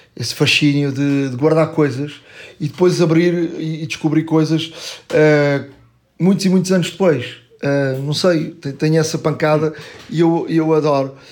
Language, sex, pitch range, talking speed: Portuguese, male, 145-185 Hz, 150 wpm